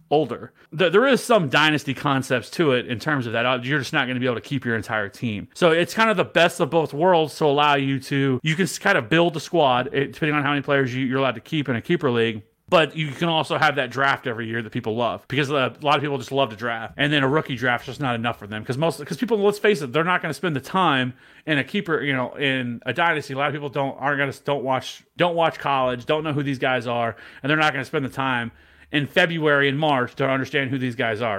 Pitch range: 125-155 Hz